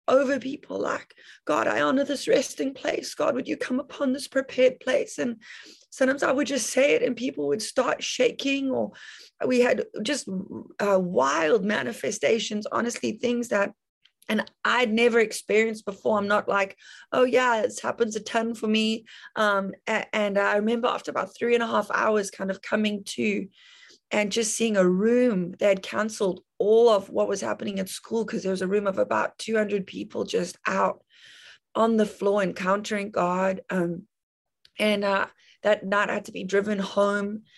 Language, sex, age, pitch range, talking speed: English, female, 30-49, 195-240 Hz, 180 wpm